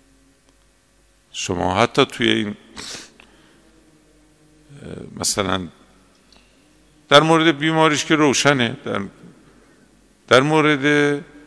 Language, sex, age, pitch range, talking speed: Persian, male, 50-69, 100-140 Hz, 70 wpm